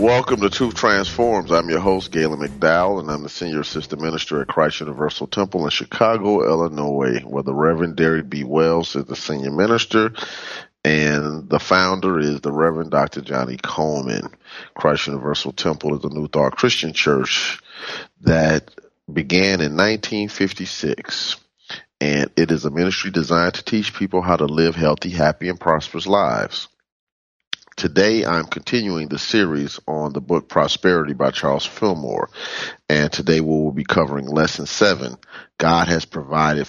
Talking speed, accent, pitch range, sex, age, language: 150 wpm, American, 75-90 Hz, male, 30-49, English